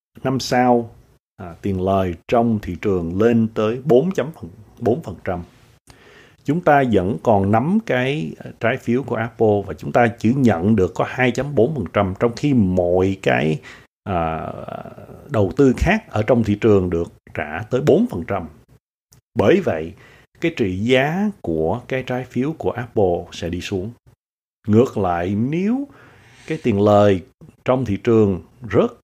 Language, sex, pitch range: Vietnamese, male, 95-125 Hz